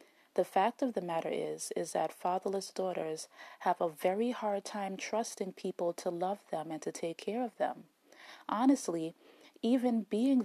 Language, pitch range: English, 175-215 Hz